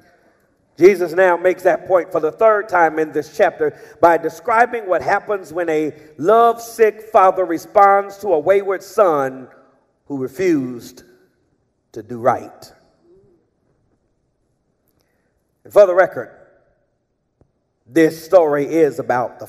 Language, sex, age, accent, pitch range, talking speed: English, male, 40-59, American, 155-210 Hz, 120 wpm